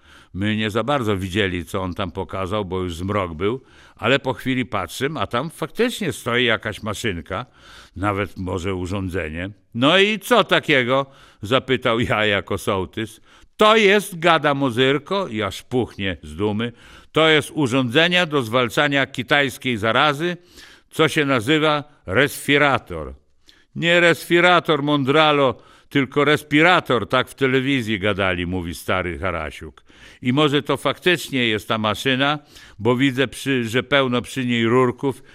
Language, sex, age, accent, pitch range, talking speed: Polish, male, 60-79, native, 105-145 Hz, 135 wpm